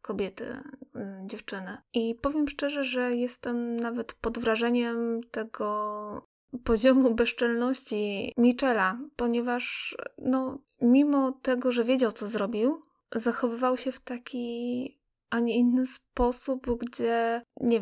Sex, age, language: female, 20-39, Polish